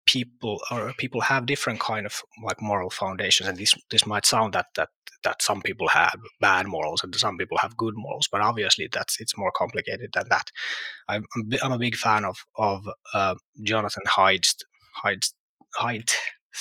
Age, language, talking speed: 20-39, English, 175 wpm